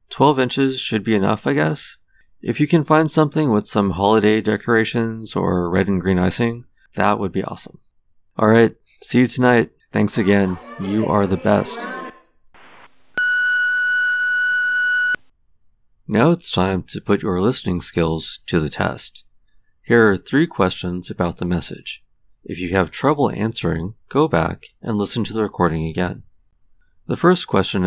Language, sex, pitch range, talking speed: English, male, 90-135 Hz, 150 wpm